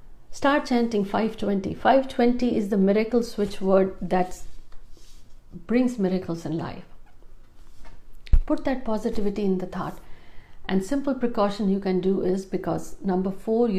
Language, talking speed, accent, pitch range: Hindi, 130 wpm, native, 180-210 Hz